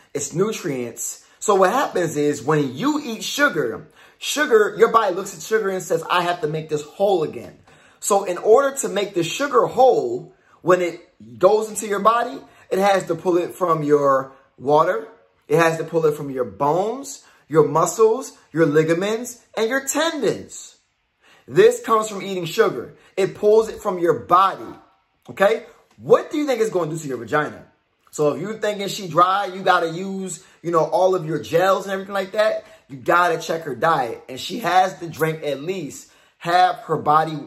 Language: English